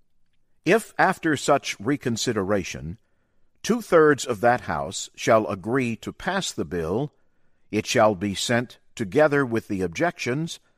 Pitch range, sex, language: 105-140 Hz, male, English